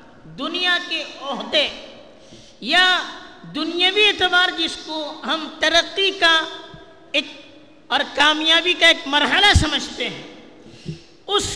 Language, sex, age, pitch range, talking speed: Urdu, female, 50-69, 255-345 Hz, 105 wpm